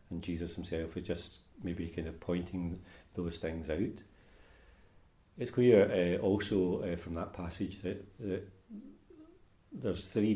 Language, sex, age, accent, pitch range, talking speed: English, male, 40-59, British, 85-95 Hz, 140 wpm